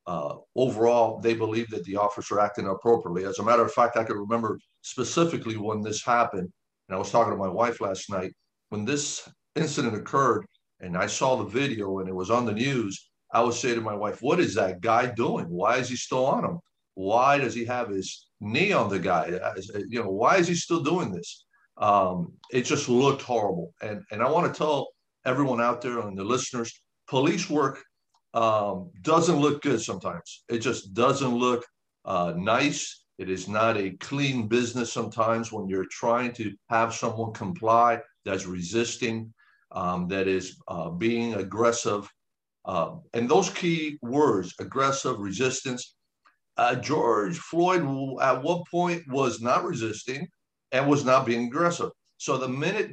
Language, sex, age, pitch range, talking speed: English, male, 50-69, 105-135 Hz, 180 wpm